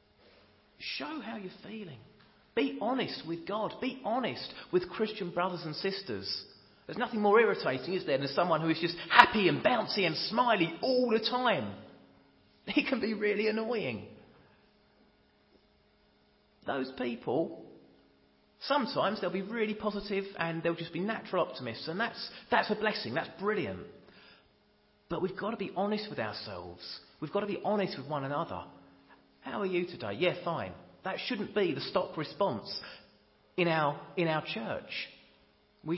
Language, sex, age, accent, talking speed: English, male, 30-49, British, 155 wpm